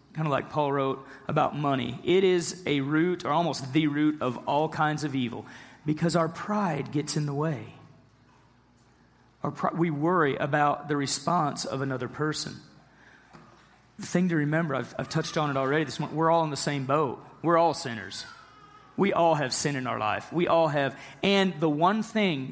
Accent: American